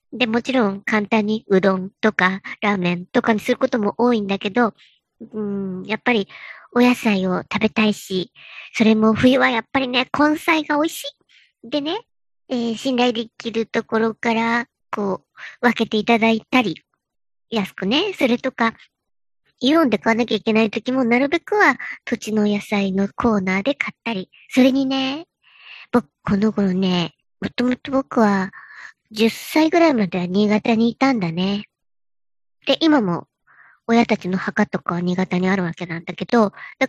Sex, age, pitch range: male, 40-59, 200-265 Hz